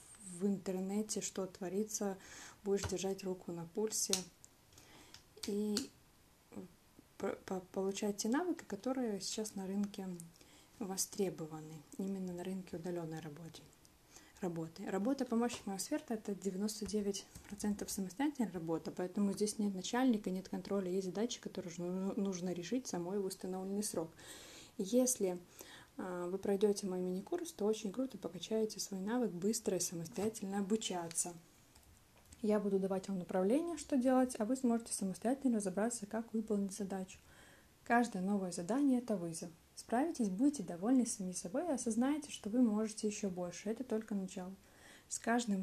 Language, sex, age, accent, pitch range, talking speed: Russian, female, 20-39, native, 185-225 Hz, 130 wpm